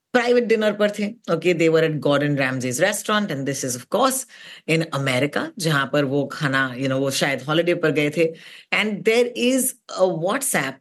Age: 30-49